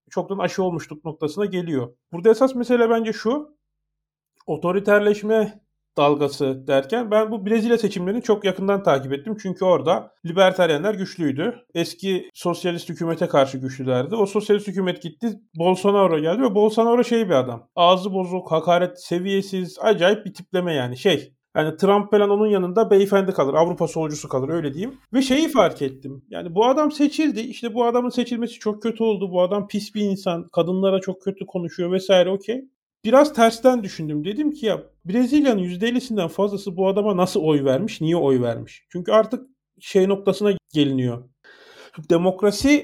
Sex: male